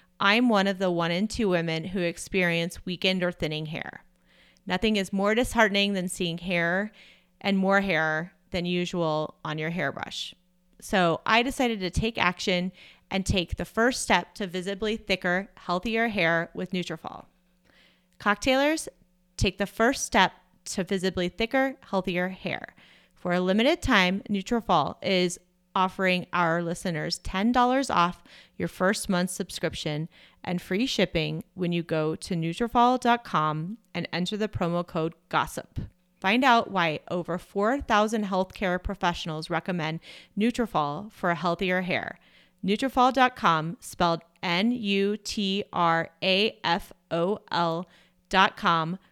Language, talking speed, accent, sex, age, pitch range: English, 125 wpm, American, female, 30-49, 175-205 Hz